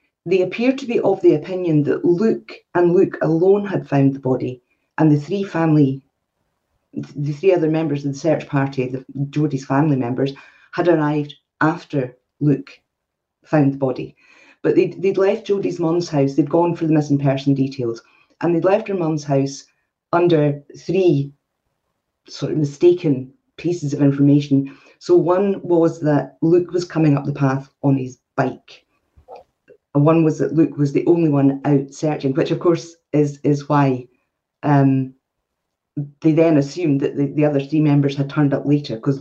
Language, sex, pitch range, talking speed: English, female, 140-175 Hz, 170 wpm